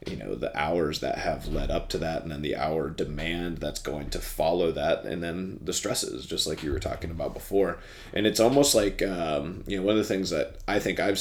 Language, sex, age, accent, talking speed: English, male, 30-49, American, 245 wpm